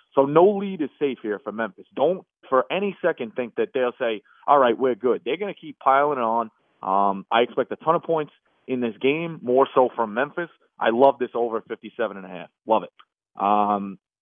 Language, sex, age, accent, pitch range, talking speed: English, male, 30-49, American, 115-140 Hz, 215 wpm